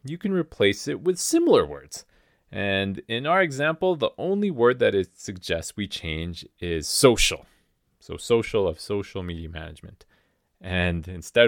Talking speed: 150 wpm